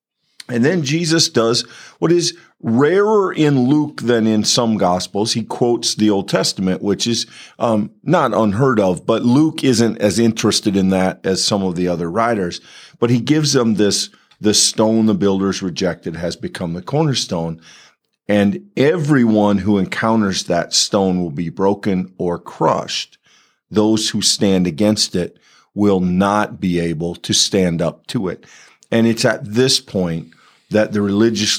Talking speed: 160 wpm